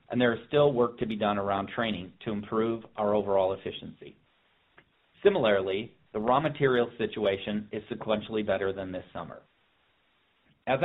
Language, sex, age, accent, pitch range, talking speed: English, male, 40-59, American, 105-125 Hz, 150 wpm